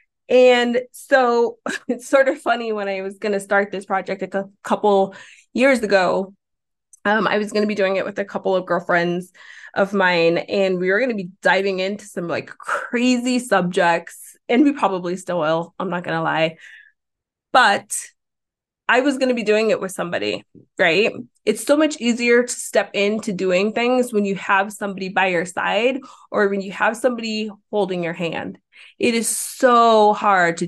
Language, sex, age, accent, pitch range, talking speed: English, female, 20-39, American, 185-240 Hz, 185 wpm